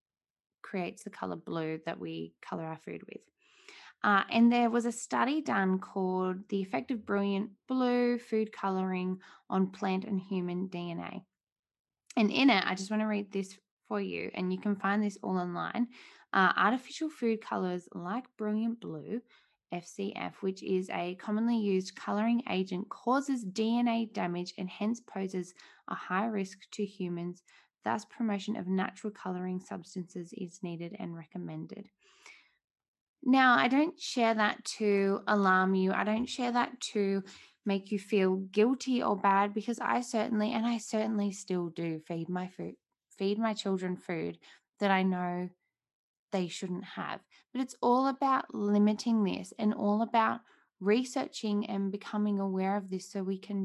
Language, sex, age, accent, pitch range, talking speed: English, female, 10-29, Australian, 185-225 Hz, 160 wpm